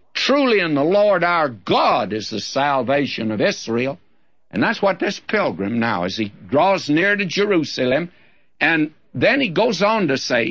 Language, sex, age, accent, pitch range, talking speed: English, male, 60-79, American, 135-205 Hz, 170 wpm